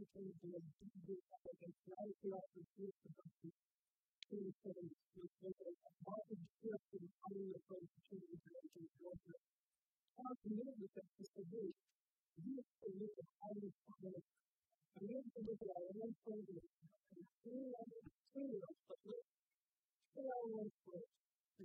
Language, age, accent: English, 50-69, American